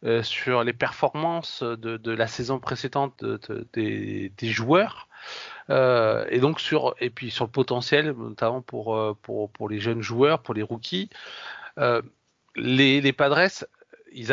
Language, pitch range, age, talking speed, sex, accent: French, 115-140 Hz, 40-59, 165 wpm, male, French